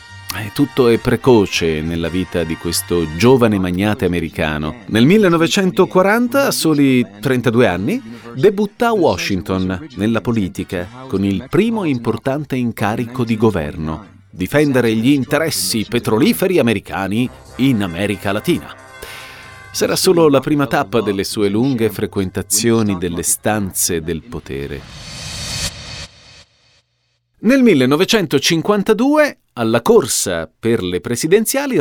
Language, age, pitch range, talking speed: Italian, 40-59, 95-145 Hz, 105 wpm